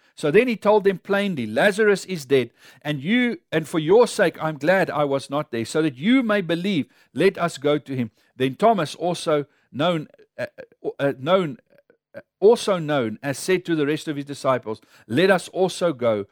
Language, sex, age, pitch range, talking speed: English, male, 60-79, 120-180 Hz, 195 wpm